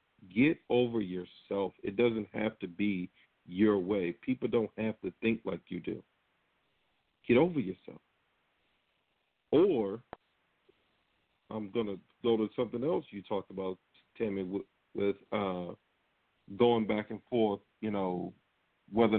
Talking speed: 130 wpm